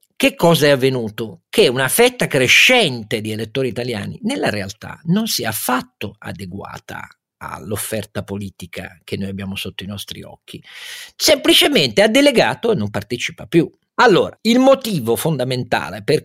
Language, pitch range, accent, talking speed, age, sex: Italian, 110-155 Hz, native, 145 wpm, 50-69, male